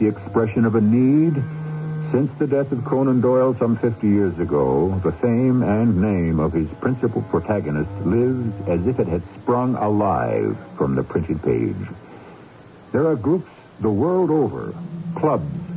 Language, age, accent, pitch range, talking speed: English, 60-79, American, 90-125 Hz, 155 wpm